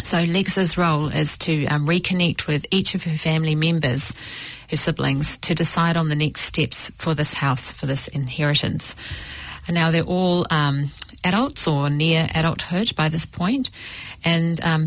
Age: 40-59